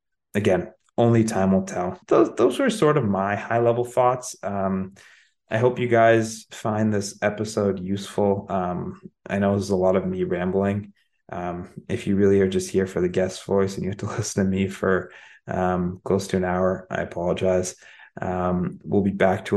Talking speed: 190 wpm